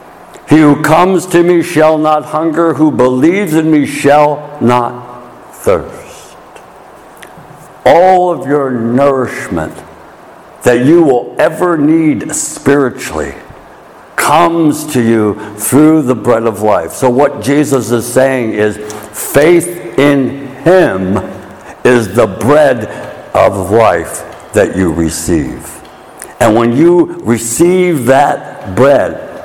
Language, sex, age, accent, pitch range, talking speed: English, male, 60-79, American, 115-155 Hz, 115 wpm